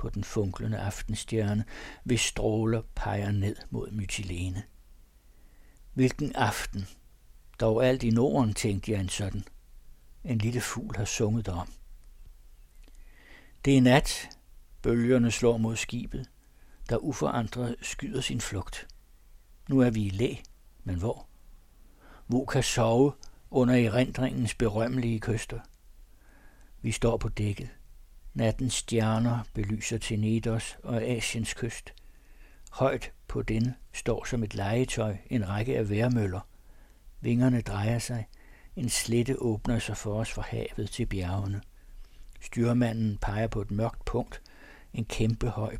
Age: 60-79